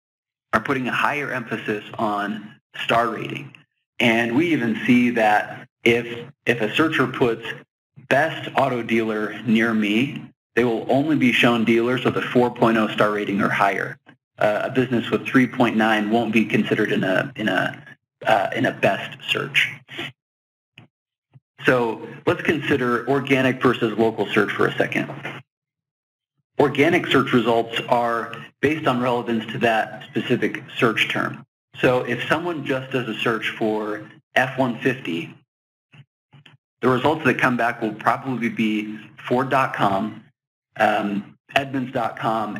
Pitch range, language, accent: 110-130 Hz, English, American